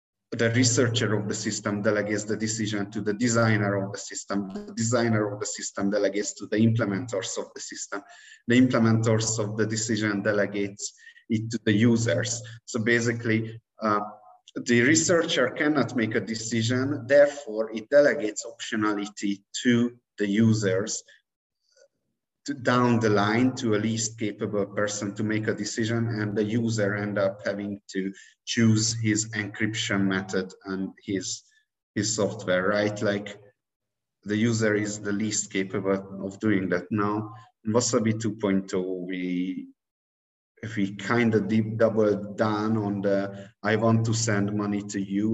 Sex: male